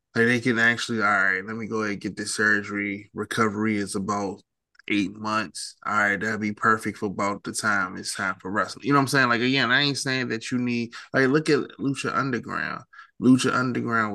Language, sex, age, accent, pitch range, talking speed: English, male, 20-39, American, 105-120 Hz, 220 wpm